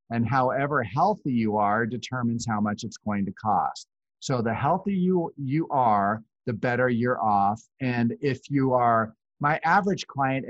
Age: 40-59